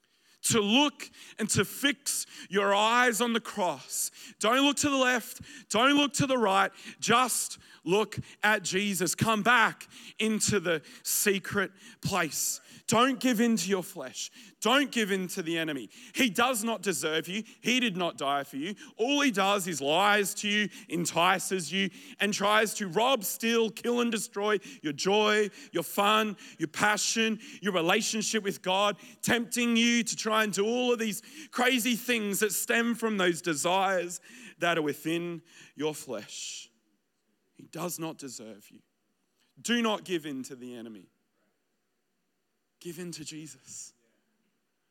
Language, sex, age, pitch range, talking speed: English, male, 30-49, 170-230 Hz, 155 wpm